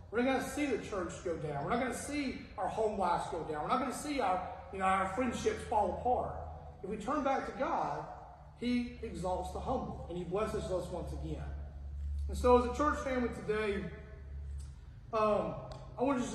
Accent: American